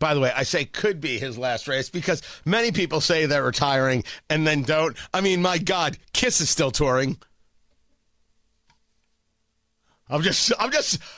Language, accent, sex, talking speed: English, American, male, 165 wpm